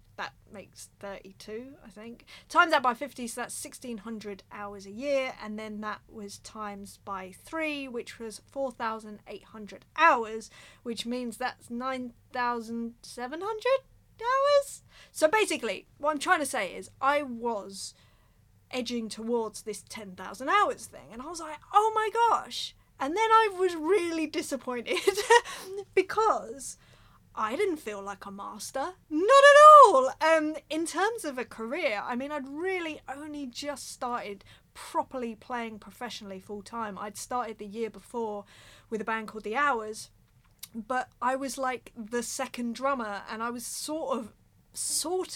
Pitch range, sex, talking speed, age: 220-300 Hz, female, 150 wpm, 30-49